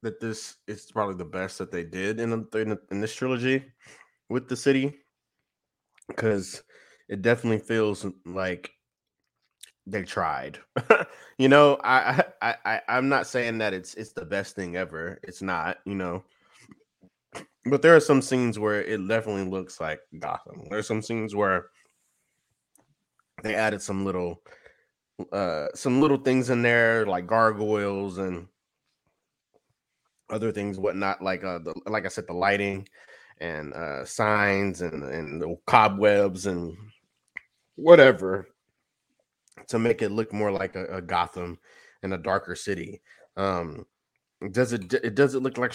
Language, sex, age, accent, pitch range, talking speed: English, male, 20-39, American, 95-115 Hz, 145 wpm